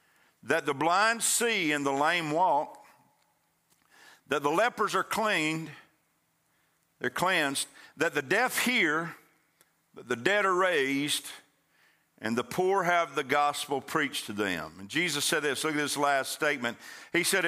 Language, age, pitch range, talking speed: English, 50-69, 125-165 Hz, 150 wpm